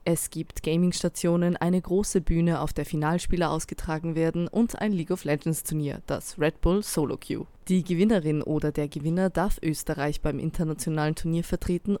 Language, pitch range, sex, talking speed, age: German, 155-190 Hz, female, 160 wpm, 20-39